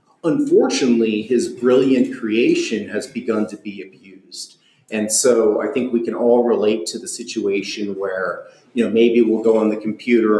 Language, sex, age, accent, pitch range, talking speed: English, male, 40-59, American, 110-140 Hz, 165 wpm